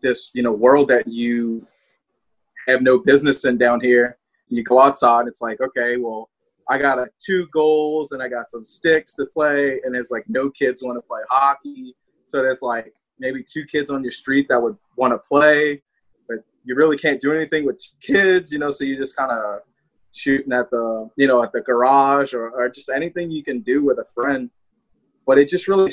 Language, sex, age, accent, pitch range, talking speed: English, male, 20-39, American, 120-140 Hz, 220 wpm